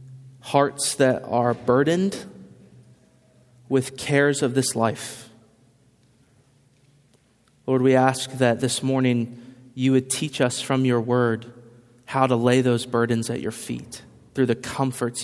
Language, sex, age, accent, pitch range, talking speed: English, male, 30-49, American, 120-140 Hz, 130 wpm